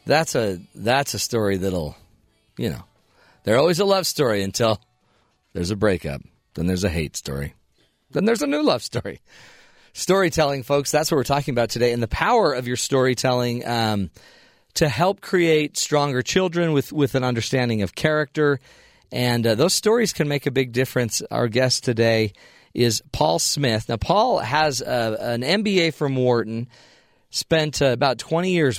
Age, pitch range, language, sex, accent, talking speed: 40-59, 110-145 Hz, English, male, American, 170 wpm